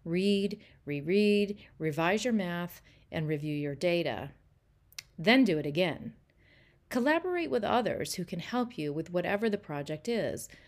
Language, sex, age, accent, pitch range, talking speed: English, female, 40-59, American, 145-215 Hz, 140 wpm